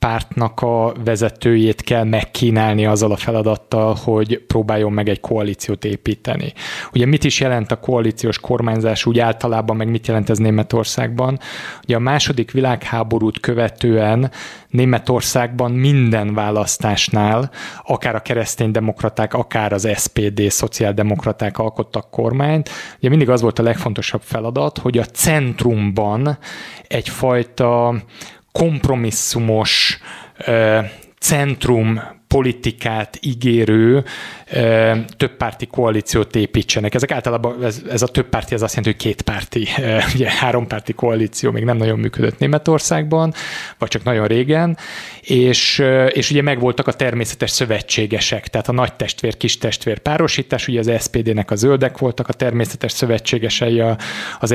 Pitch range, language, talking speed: 110-125 Hz, Hungarian, 125 wpm